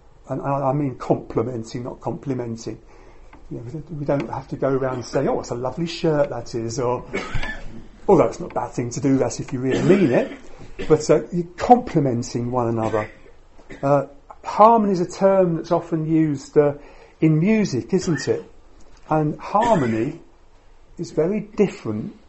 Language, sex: English, male